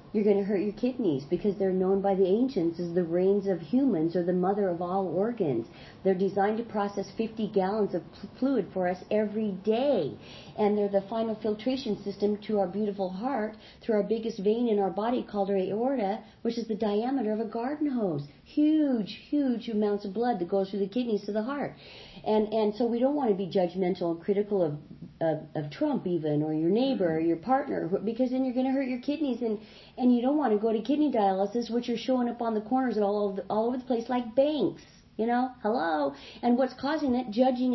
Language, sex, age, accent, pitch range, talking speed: English, female, 50-69, American, 195-255 Hz, 225 wpm